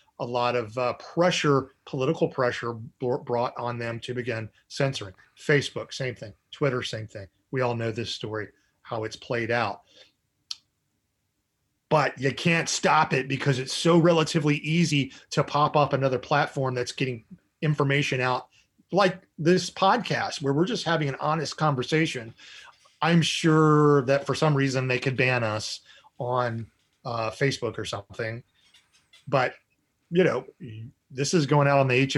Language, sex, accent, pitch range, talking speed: English, male, American, 115-145 Hz, 150 wpm